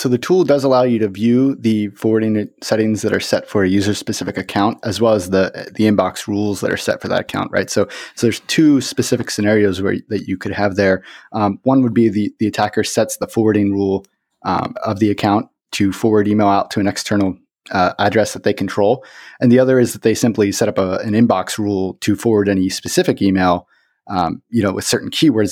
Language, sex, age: English, male, 30-49